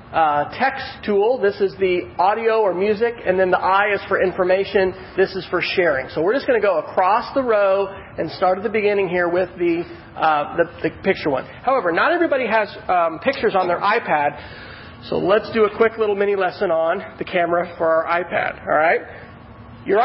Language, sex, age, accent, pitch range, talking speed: English, male, 40-59, American, 165-210 Hz, 205 wpm